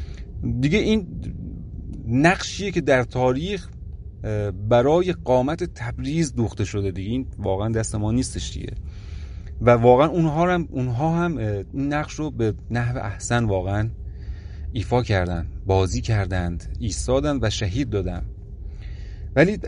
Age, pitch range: 30-49, 100-130 Hz